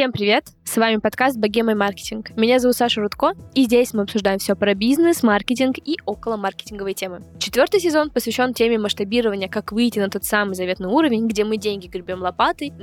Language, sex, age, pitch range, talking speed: Russian, female, 10-29, 205-260 Hz, 190 wpm